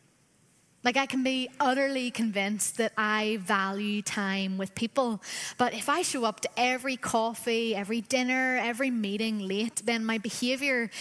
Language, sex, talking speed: English, female, 155 wpm